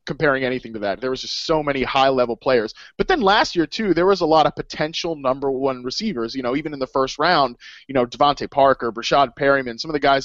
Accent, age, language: American, 20-39, English